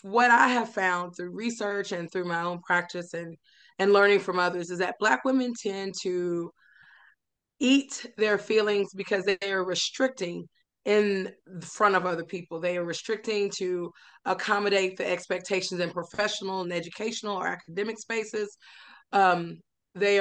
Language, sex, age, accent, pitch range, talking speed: English, female, 20-39, American, 175-205 Hz, 150 wpm